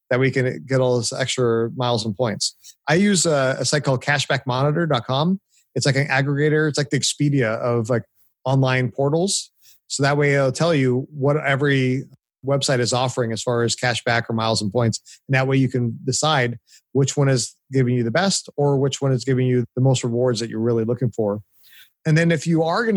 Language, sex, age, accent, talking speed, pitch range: English, male, 30-49, American, 210 wpm, 125-150 Hz